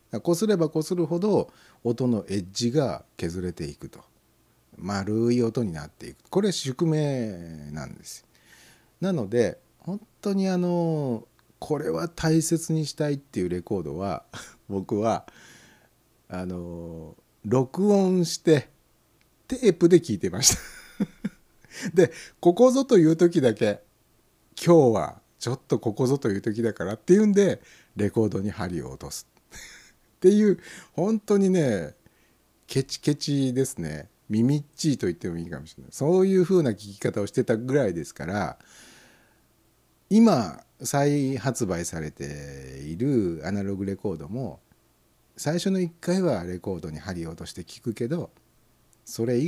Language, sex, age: Japanese, male, 60-79